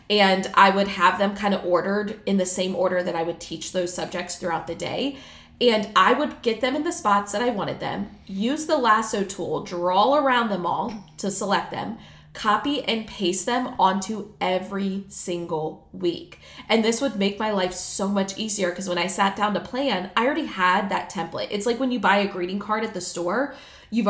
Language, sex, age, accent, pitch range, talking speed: English, female, 20-39, American, 190-255 Hz, 210 wpm